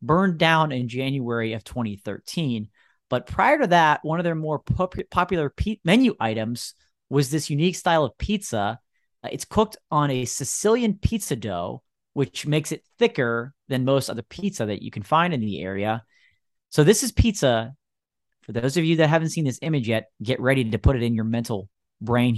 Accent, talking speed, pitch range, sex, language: American, 180 wpm, 115-170 Hz, male, English